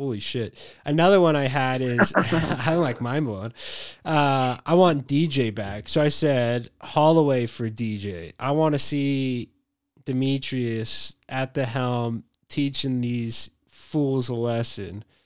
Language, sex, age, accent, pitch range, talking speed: English, male, 20-39, American, 105-135 Hz, 140 wpm